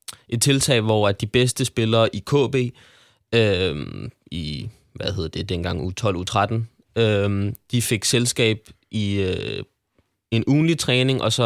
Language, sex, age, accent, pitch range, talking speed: Danish, male, 20-39, native, 95-115 Hz, 135 wpm